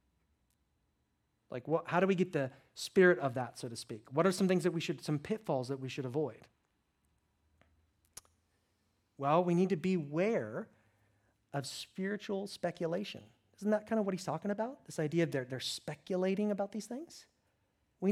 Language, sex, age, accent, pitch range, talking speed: English, male, 40-59, American, 125-195 Hz, 170 wpm